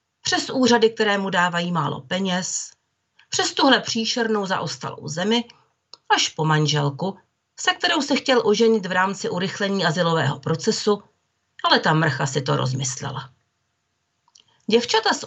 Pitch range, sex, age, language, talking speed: 155-245 Hz, female, 40-59, Czech, 130 wpm